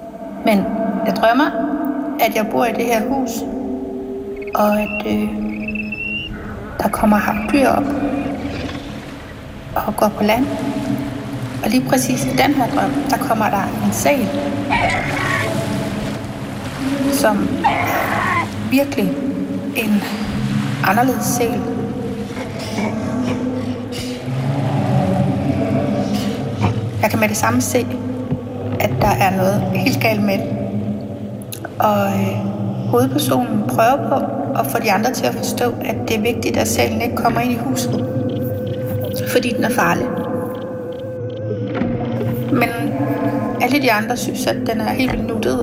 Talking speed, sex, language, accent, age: 115 wpm, female, Danish, native, 60-79